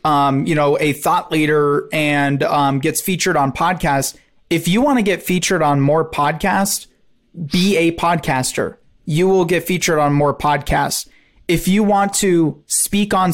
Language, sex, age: English, male, 30-49